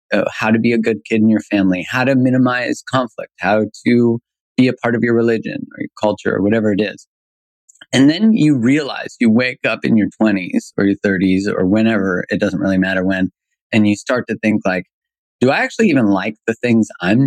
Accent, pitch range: American, 95-125 Hz